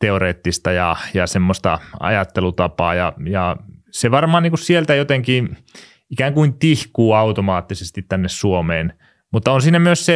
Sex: male